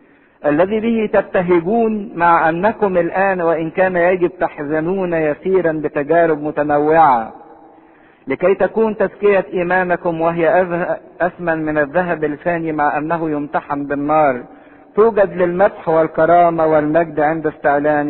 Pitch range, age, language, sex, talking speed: 150-205 Hz, 50-69, English, male, 105 wpm